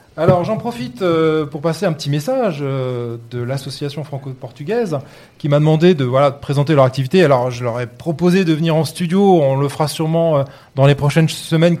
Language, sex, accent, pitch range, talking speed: French, male, French, 135-175 Hz, 190 wpm